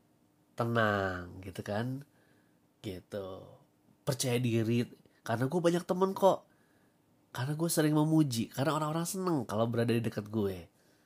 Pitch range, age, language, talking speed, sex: 100-140 Hz, 20-39, Indonesian, 125 wpm, male